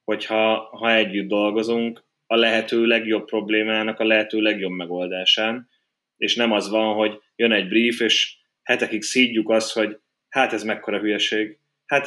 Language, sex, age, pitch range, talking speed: Hungarian, male, 20-39, 105-115 Hz, 150 wpm